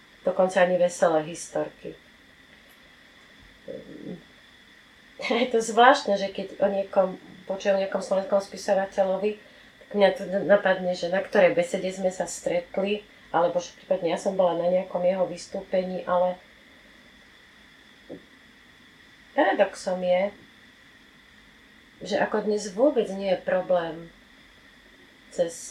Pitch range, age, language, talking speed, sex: 175-205 Hz, 30-49, Slovak, 110 wpm, female